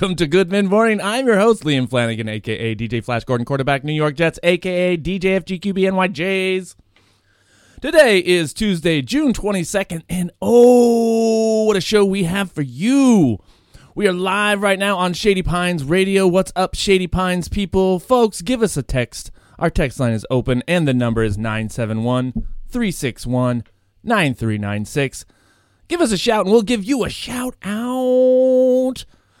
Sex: male